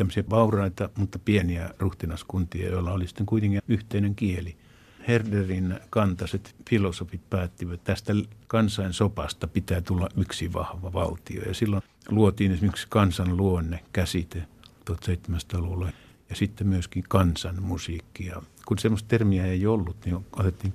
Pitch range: 90-105 Hz